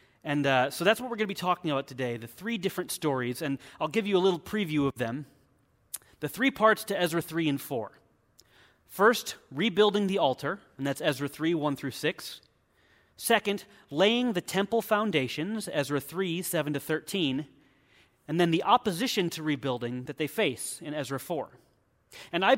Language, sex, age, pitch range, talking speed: English, male, 30-49, 135-195 Hz, 180 wpm